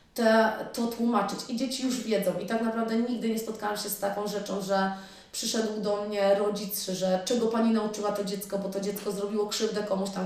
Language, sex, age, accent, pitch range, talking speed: Polish, female, 20-39, native, 190-220 Hz, 205 wpm